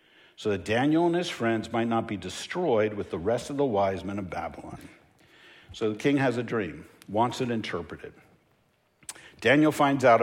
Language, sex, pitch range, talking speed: English, male, 120-175 Hz, 180 wpm